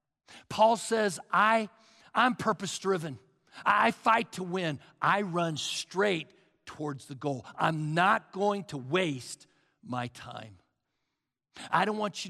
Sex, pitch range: male, 140-205 Hz